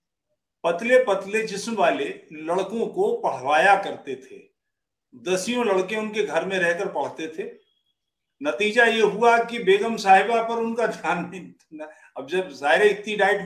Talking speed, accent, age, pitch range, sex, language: 145 wpm, Indian, 50-69, 185-270 Hz, male, English